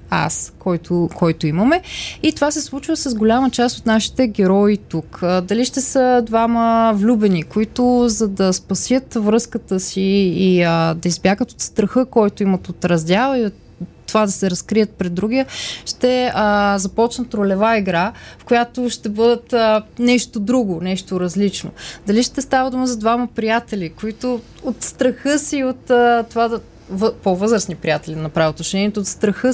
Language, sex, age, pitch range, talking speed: Bulgarian, female, 20-39, 195-245 Hz, 165 wpm